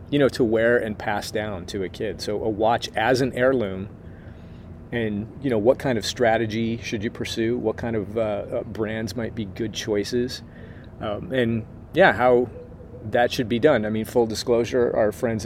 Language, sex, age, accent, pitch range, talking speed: English, male, 30-49, American, 105-120 Hz, 190 wpm